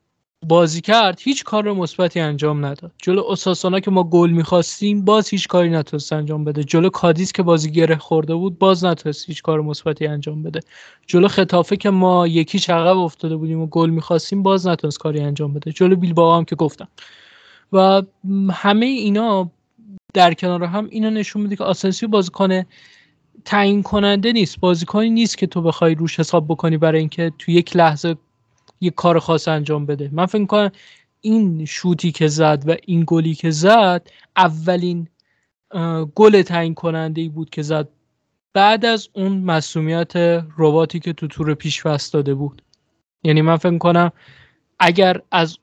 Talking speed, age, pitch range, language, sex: 160 wpm, 20-39, 160-190 Hz, Persian, male